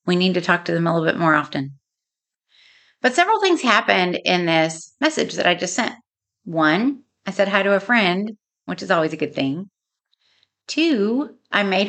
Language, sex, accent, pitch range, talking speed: English, female, American, 180-255 Hz, 190 wpm